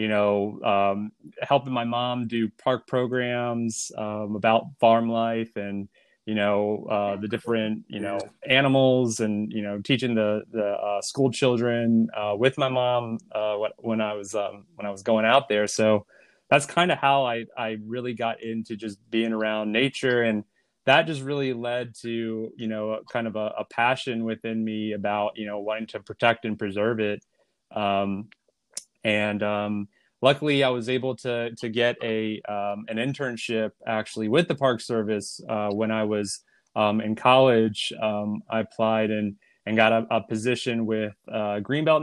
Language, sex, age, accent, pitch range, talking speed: English, male, 30-49, American, 105-125 Hz, 175 wpm